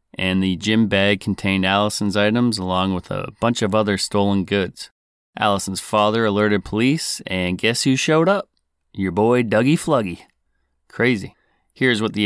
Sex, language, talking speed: male, English, 155 wpm